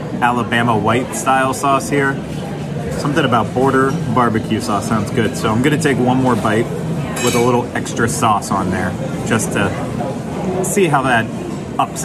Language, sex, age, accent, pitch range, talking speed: English, male, 30-49, American, 125-155 Hz, 165 wpm